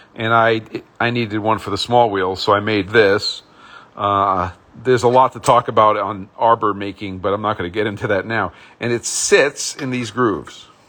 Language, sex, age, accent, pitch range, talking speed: English, male, 50-69, American, 100-125 Hz, 210 wpm